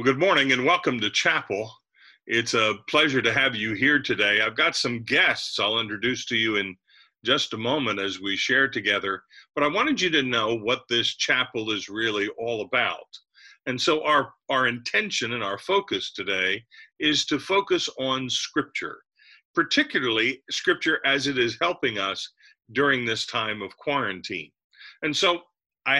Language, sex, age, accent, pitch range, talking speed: English, male, 50-69, American, 115-175 Hz, 170 wpm